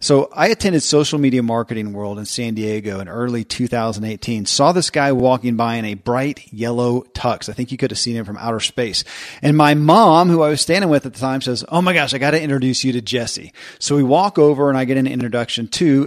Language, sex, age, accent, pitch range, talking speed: English, male, 40-59, American, 120-150 Hz, 245 wpm